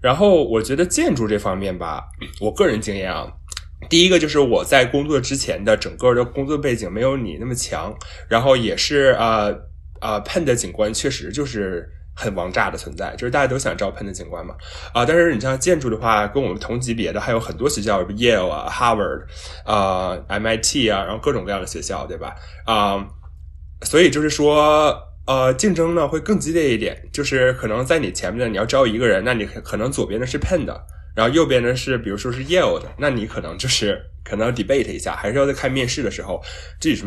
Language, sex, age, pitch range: Chinese, male, 20-39, 95-135 Hz